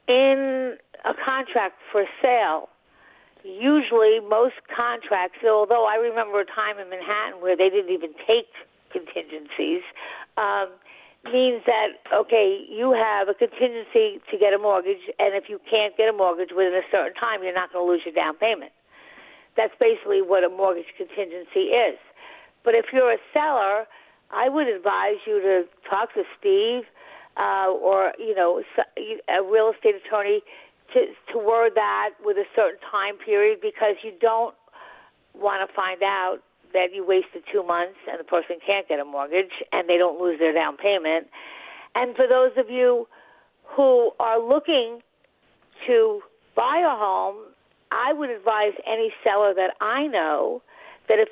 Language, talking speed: English, 160 wpm